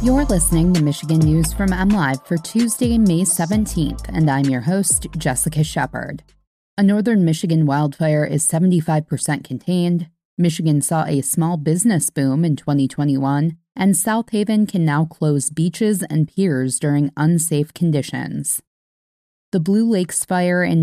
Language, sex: English, female